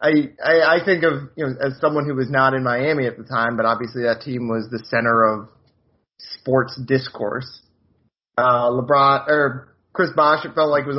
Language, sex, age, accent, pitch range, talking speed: English, male, 30-49, American, 115-145 Hz, 190 wpm